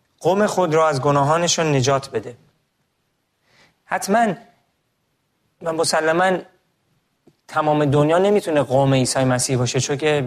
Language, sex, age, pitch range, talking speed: Persian, male, 30-49, 125-160 Hz, 105 wpm